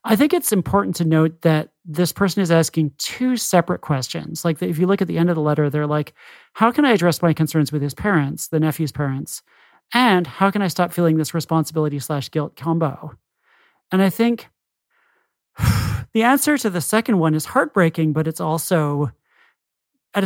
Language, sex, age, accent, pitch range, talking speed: English, male, 40-59, American, 150-185 Hz, 190 wpm